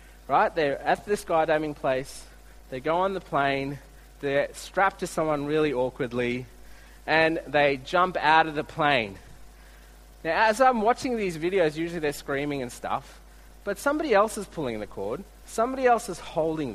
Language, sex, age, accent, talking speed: English, male, 30-49, Australian, 165 wpm